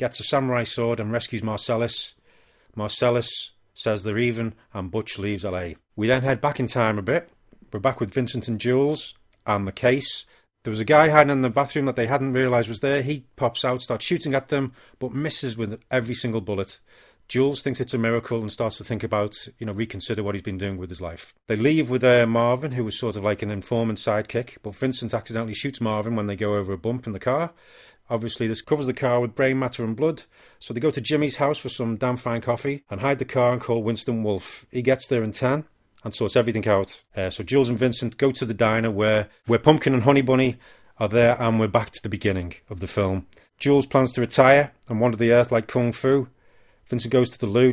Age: 40-59